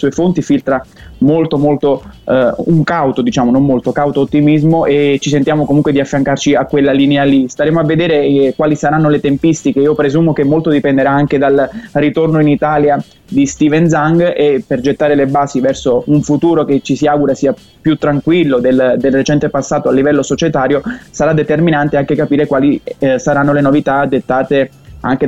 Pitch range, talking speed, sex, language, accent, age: 135-150 Hz, 185 wpm, male, Italian, native, 20-39